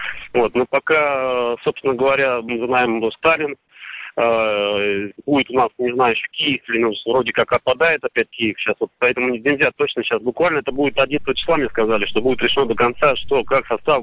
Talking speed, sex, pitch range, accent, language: 190 wpm, male, 120-145 Hz, native, Russian